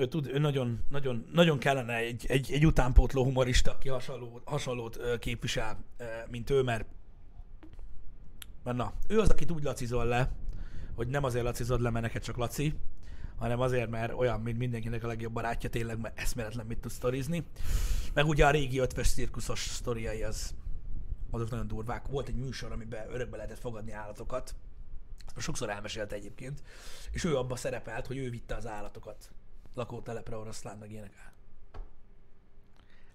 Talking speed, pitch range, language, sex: 150 wpm, 105-140 Hz, Hungarian, male